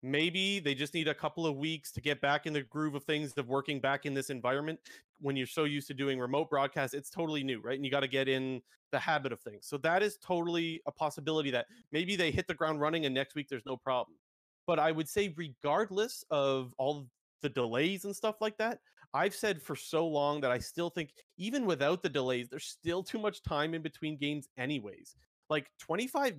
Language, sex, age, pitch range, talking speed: English, male, 30-49, 140-180 Hz, 225 wpm